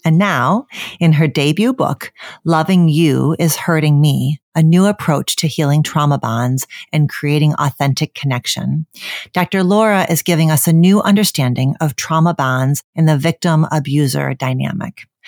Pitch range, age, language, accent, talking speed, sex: 150-190 Hz, 40-59, English, American, 145 wpm, female